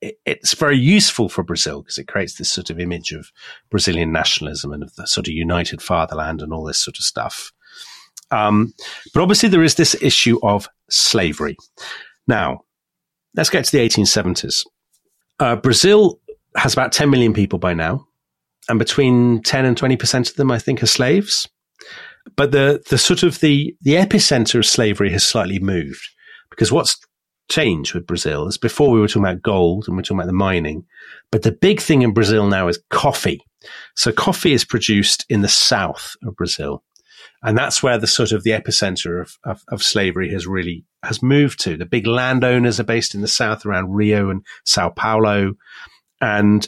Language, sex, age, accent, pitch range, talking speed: English, male, 40-59, British, 95-135 Hz, 185 wpm